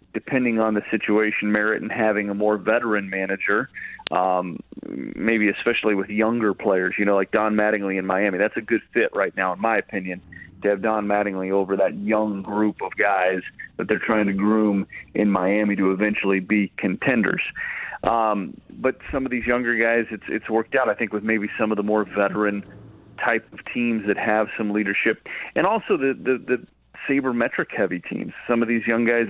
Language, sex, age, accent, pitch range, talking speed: English, male, 40-59, American, 100-115 Hz, 195 wpm